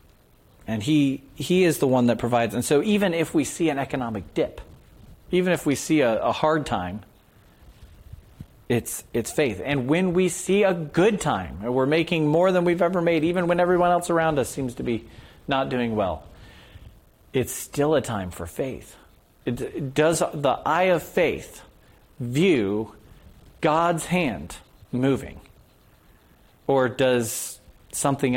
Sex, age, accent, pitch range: male, 40-59, American, 105-140 Hz